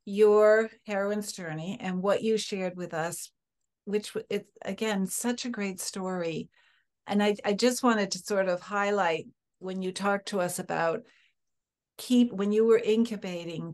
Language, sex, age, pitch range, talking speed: English, female, 60-79, 180-215 Hz, 155 wpm